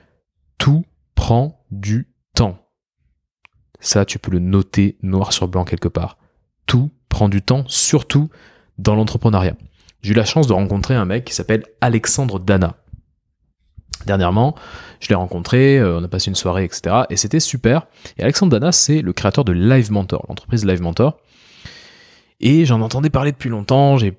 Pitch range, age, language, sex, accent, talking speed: 95-135 Hz, 20-39, French, male, French, 160 wpm